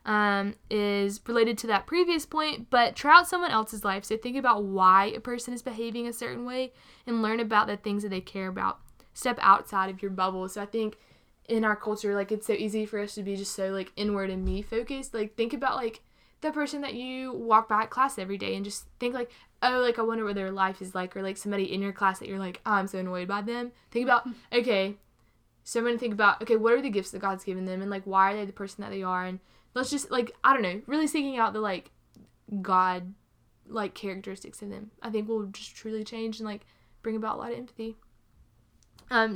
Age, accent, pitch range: 10-29, American, 195-235 Hz